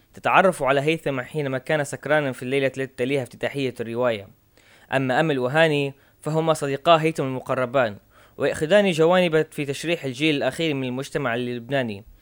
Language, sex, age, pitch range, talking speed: Arabic, female, 20-39, 125-155 Hz, 135 wpm